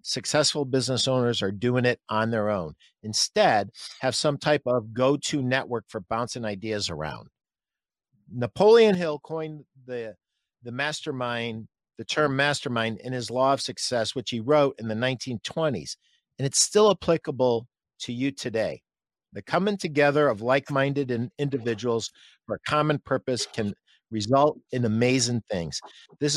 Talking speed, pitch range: 145 wpm, 120-150 Hz